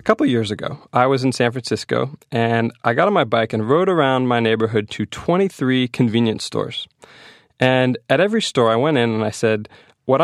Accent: American